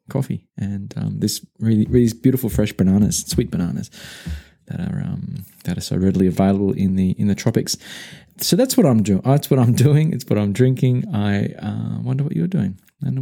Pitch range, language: 100-145 Hz, English